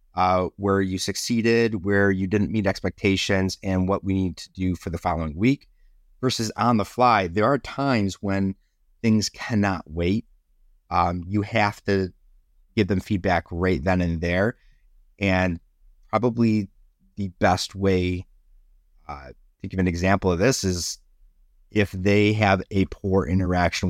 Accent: American